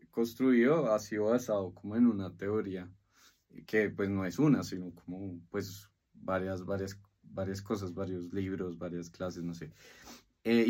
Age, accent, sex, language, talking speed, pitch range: 20-39, Colombian, male, Spanish, 150 wpm, 95-115 Hz